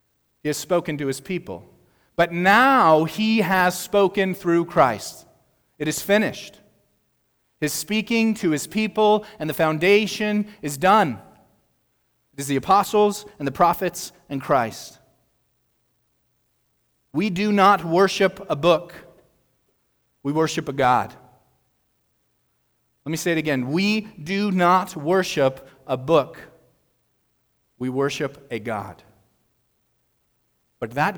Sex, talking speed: male, 120 wpm